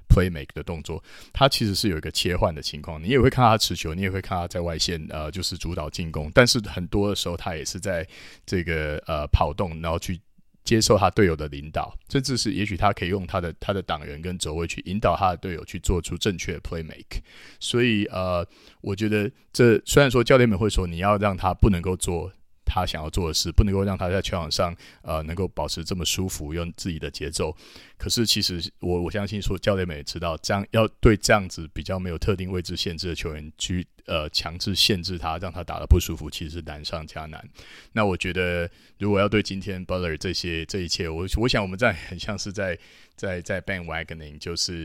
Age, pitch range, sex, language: 30-49, 85-100 Hz, male, Chinese